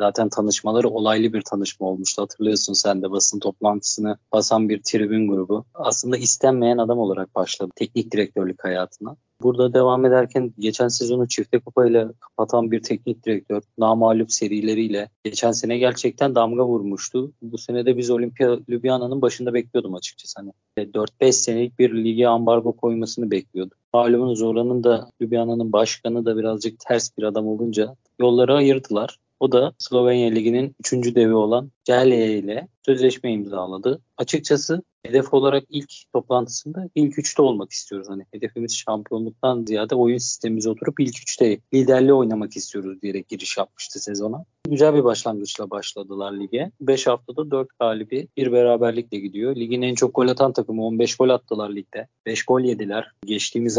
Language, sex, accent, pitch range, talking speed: Turkish, male, native, 110-125 Hz, 150 wpm